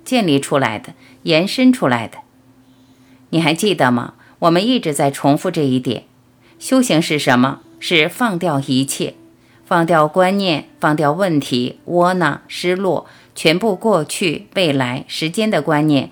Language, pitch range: Chinese, 135-185 Hz